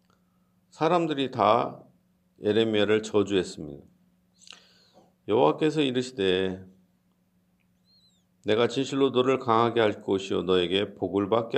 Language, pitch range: Korean, 100-125 Hz